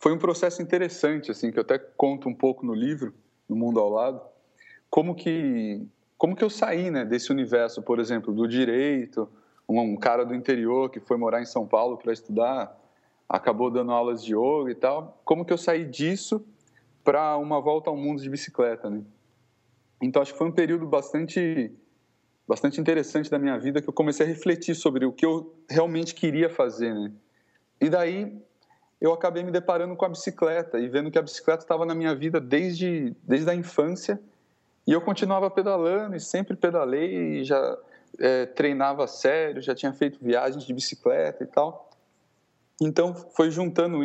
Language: Portuguese